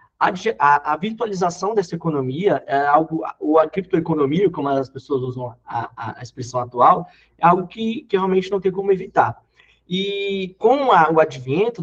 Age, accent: 20-39, Brazilian